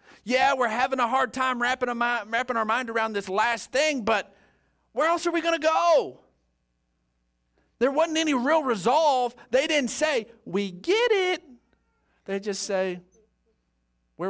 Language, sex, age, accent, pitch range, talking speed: English, male, 40-59, American, 155-255 Hz, 150 wpm